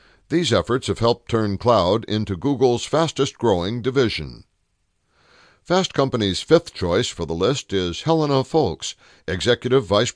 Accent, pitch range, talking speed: American, 95-130 Hz, 130 wpm